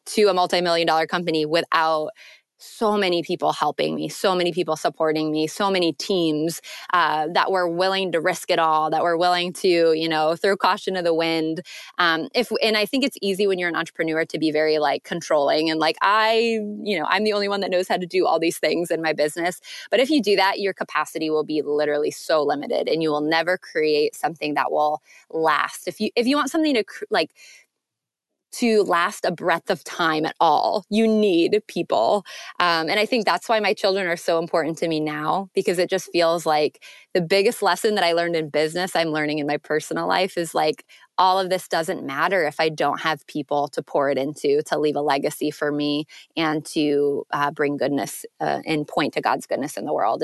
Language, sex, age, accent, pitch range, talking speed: English, female, 20-39, American, 155-195 Hz, 220 wpm